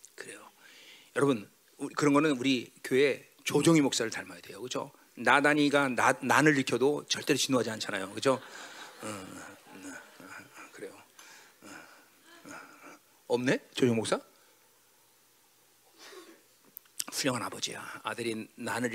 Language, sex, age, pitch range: Korean, male, 40-59, 265-435 Hz